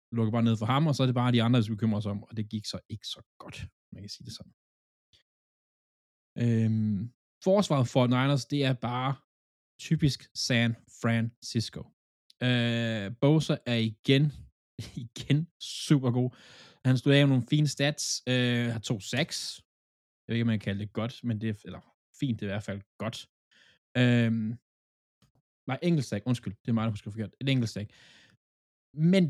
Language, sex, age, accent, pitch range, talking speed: Danish, male, 20-39, native, 110-140 Hz, 180 wpm